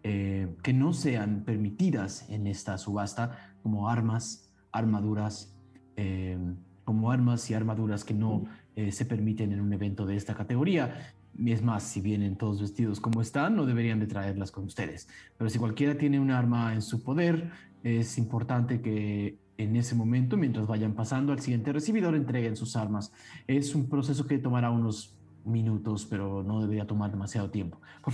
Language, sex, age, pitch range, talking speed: Spanish, male, 30-49, 105-130 Hz, 170 wpm